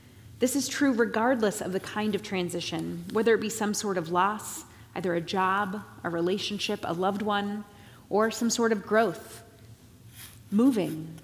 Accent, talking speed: American, 160 wpm